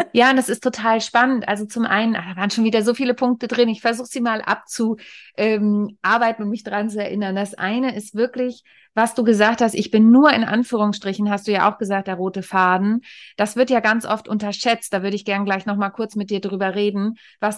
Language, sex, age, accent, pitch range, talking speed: German, female, 30-49, German, 195-230 Hz, 225 wpm